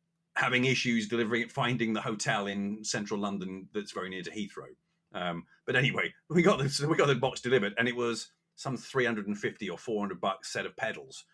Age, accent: 30-49, British